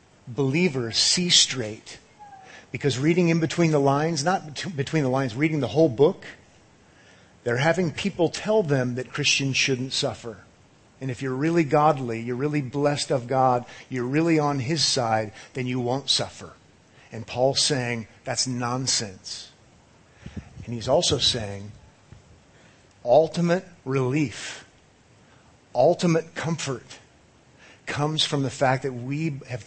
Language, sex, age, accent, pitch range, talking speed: English, male, 50-69, American, 115-150 Hz, 130 wpm